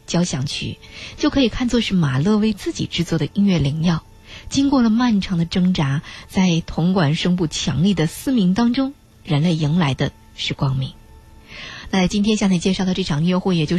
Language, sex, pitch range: Chinese, female, 155-205 Hz